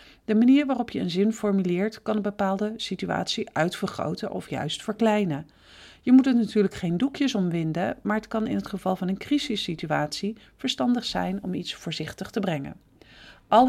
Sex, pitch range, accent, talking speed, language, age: female, 195-240 Hz, Dutch, 170 wpm, Dutch, 40-59